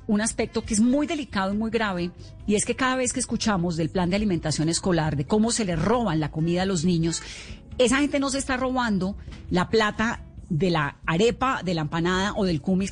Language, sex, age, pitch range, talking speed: Spanish, female, 30-49, 165-225 Hz, 225 wpm